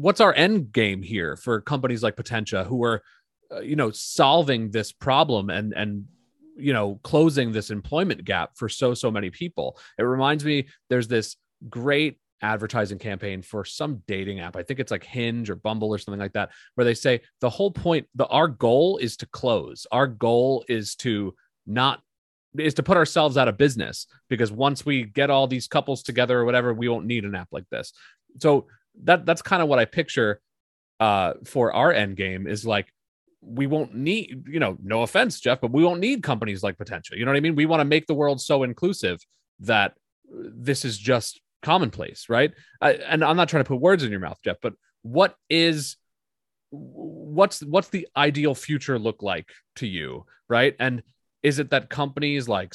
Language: English